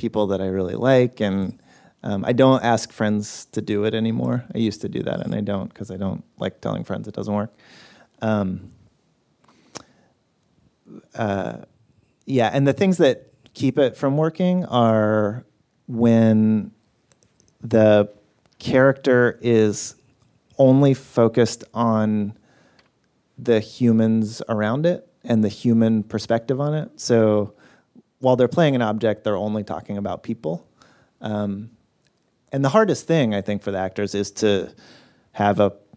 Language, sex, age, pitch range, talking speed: English, male, 30-49, 105-120 Hz, 145 wpm